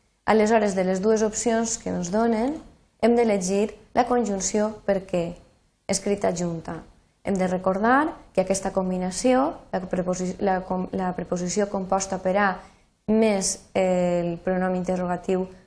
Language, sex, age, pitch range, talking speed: Spanish, female, 20-39, 185-230 Hz, 140 wpm